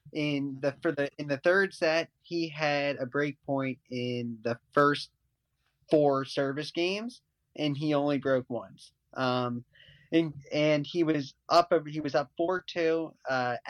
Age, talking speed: 20-39, 160 wpm